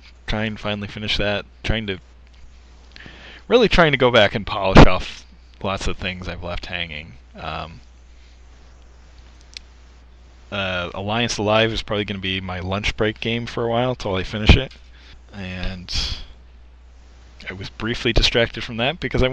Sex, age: male, 20-39